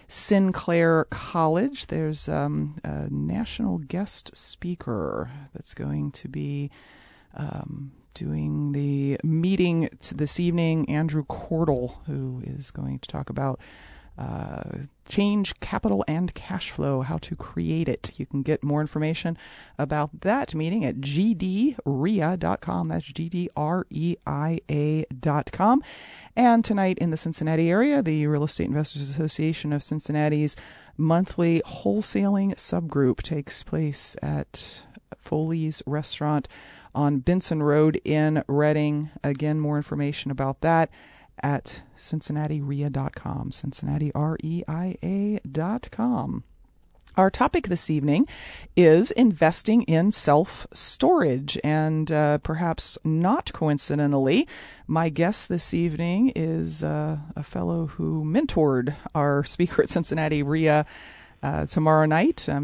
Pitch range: 145-170 Hz